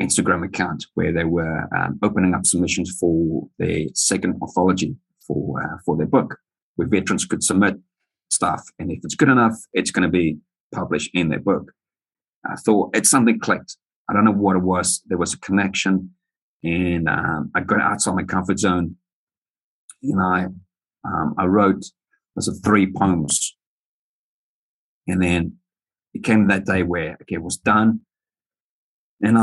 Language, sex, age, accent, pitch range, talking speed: English, male, 40-59, British, 90-105 Hz, 160 wpm